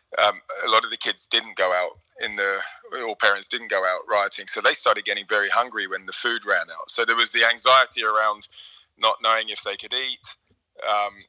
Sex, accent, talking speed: male, British, 220 wpm